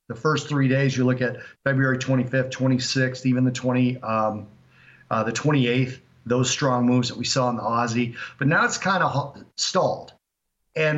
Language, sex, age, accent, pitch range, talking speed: English, male, 40-59, American, 115-130 Hz, 180 wpm